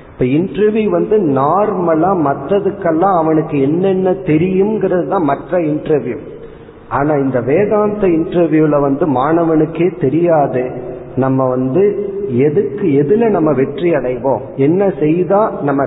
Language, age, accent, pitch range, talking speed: Tamil, 40-59, native, 130-180 Hz, 40 wpm